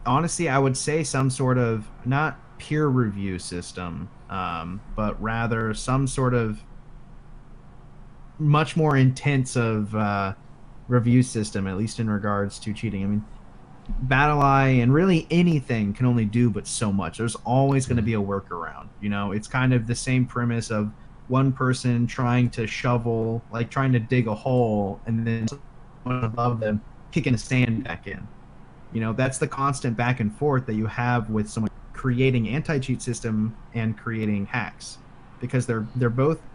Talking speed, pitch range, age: 170 wpm, 110-130 Hz, 30-49